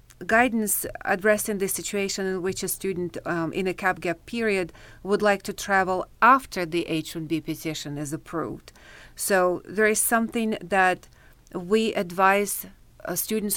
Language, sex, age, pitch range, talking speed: English, female, 40-59, 165-200 Hz, 140 wpm